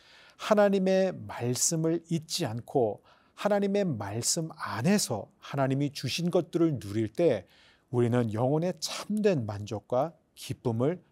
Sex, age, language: male, 40-59, Korean